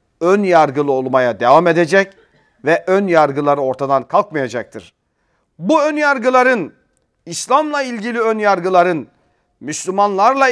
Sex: male